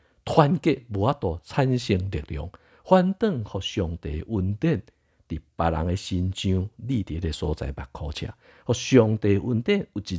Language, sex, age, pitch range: Chinese, male, 50-69, 80-115 Hz